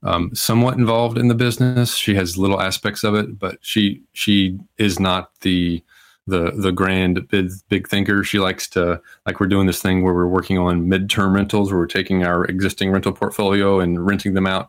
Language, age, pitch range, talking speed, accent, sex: English, 30-49, 90-100 Hz, 200 wpm, American, male